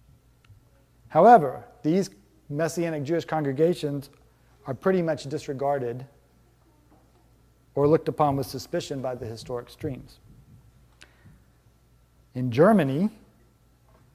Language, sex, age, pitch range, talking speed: English, male, 30-49, 130-160 Hz, 85 wpm